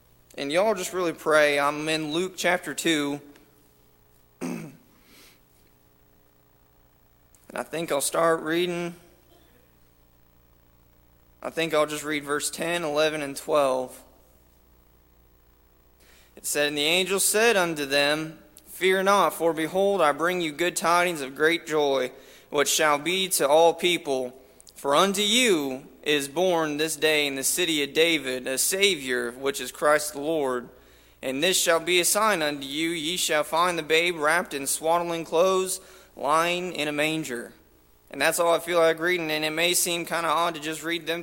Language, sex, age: English, male, 20-39